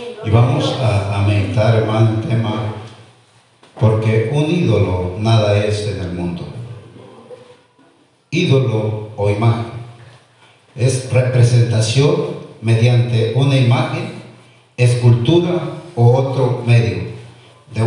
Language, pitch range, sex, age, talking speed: Spanish, 110-130 Hz, male, 50-69, 95 wpm